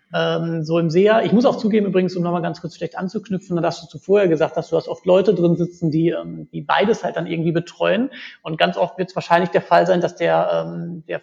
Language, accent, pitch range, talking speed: German, German, 170-205 Hz, 240 wpm